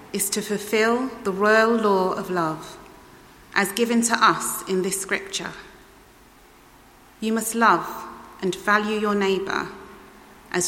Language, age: English, 30-49